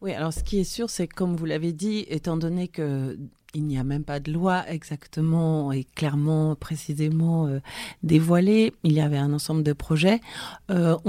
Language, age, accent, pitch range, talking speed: French, 30-49, French, 155-180 Hz, 195 wpm